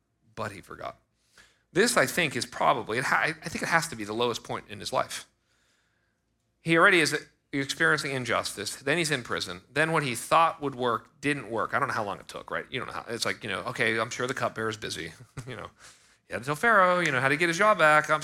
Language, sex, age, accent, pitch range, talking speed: English, male, 40-59, American, 105-140 Hz, 240 wpm